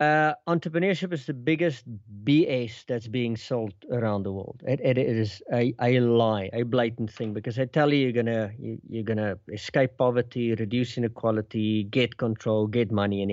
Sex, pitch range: male, 115-150 Hz